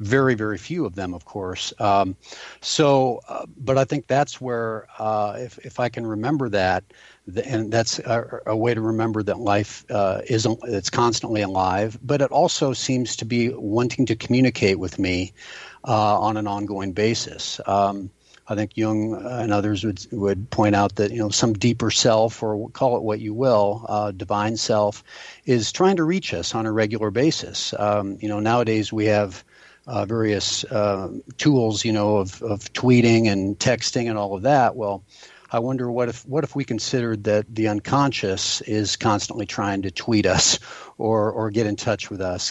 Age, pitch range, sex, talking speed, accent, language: 50-69, 100-120 Hz, male, 190 wpm, American, English